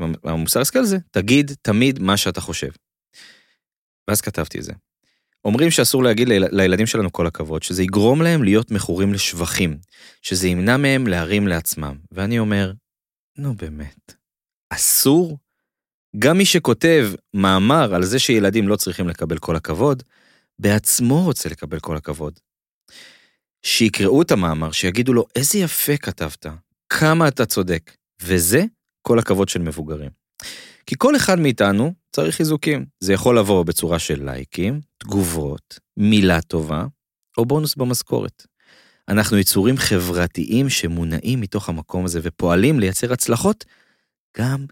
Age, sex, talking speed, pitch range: 30-49, male, 130 wpm, 85-125 Hz